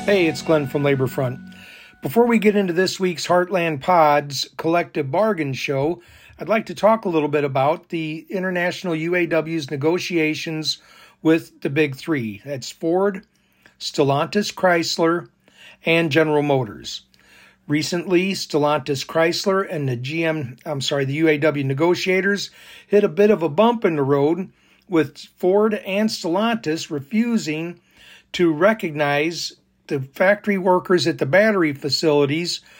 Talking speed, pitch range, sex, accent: 135 wpm, 150-190 Hz, male, American